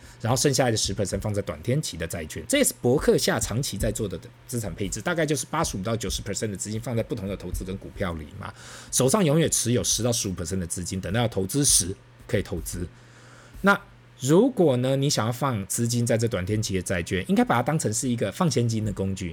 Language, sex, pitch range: Chinese, male, 100-125 Hz